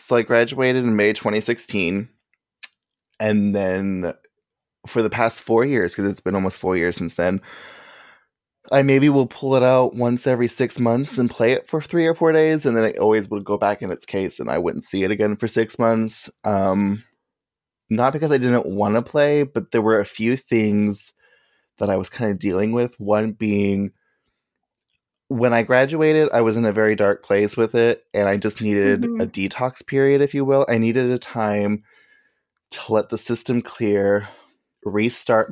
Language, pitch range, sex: English, 105-125 Hz, male